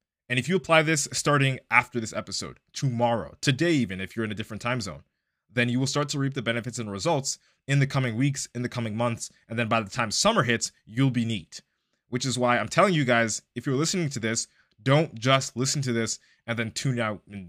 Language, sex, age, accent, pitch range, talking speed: English, male, 20-39, American, 110-140 Hz, 235 wpm